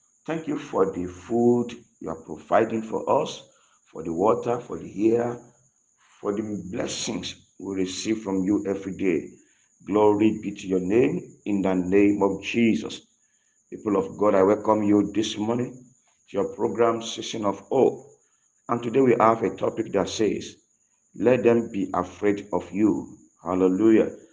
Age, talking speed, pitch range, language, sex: 50-69, 160 wpm, 100-120 Hz, English, male